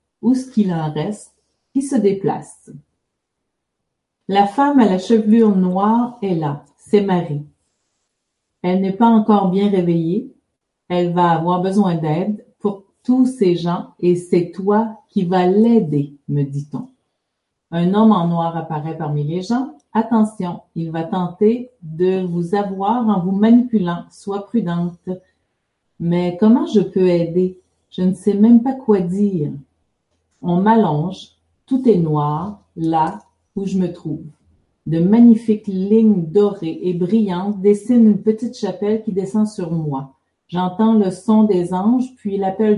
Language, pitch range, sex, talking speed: French, 175-215 Hz, female, 145 wpm